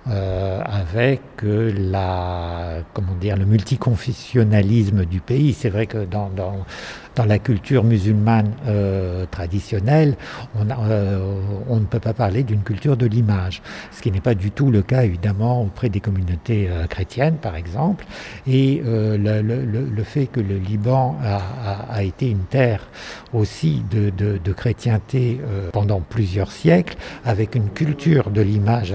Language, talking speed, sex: French, 160 wpm, male